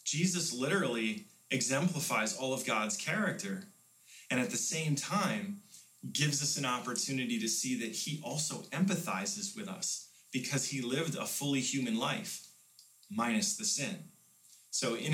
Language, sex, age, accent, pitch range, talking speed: English, male, 30-49, American, 130-195 Hz, 145 wpm